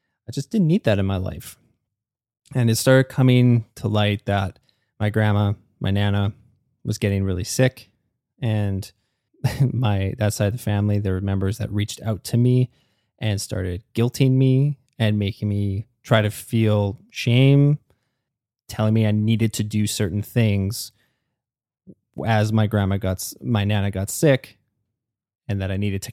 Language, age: English, 20-39